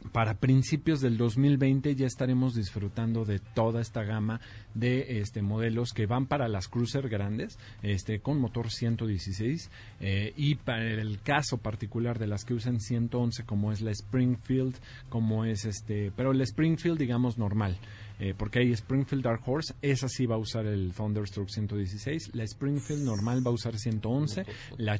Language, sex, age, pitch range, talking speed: Spanish, male, 40-59, 110-130 Hz, 165 wpm